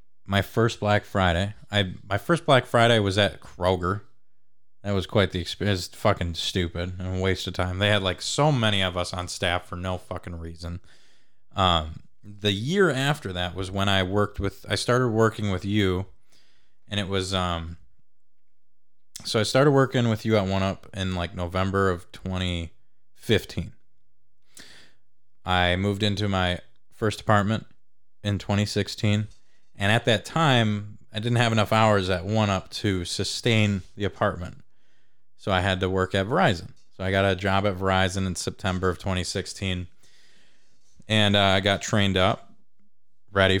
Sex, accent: male, American